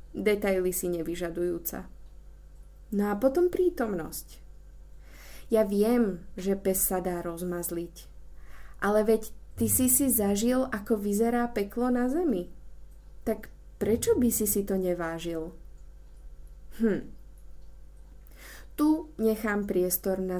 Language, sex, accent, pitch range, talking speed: Czech, female, native, 165-220 Hz, 110 wpm